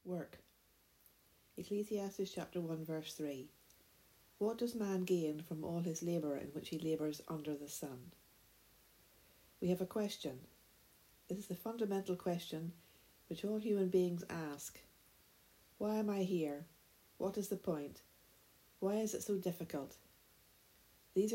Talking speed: 140 wpm